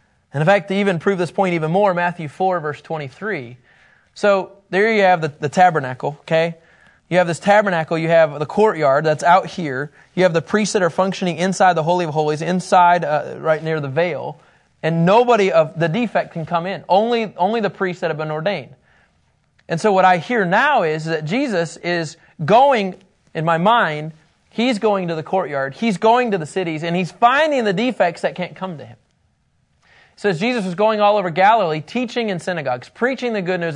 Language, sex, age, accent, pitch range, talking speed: English, male, 30-49, American, 160-215 Hz, 205 wpm